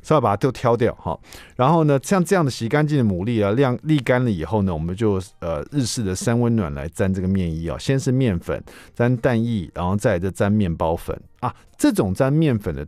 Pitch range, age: 95-135 Hz, 50-69